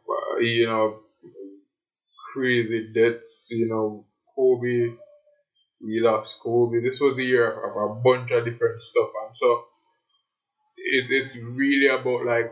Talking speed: 130 wpm